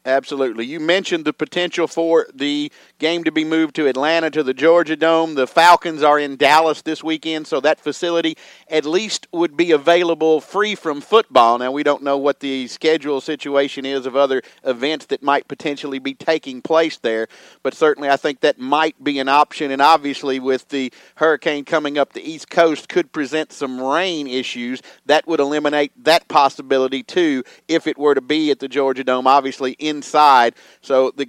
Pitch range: 140-165 Hz